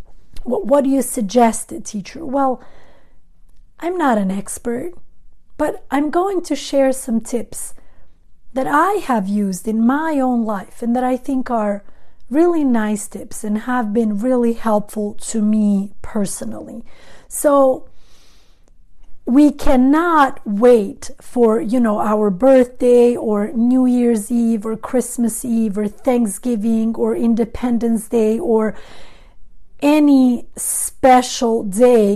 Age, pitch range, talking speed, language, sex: 40-59, 205-255 Hz, 125 wpm, English, female